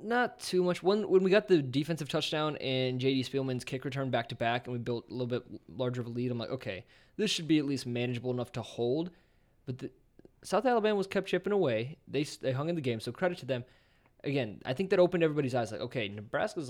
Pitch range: 120-155 Hz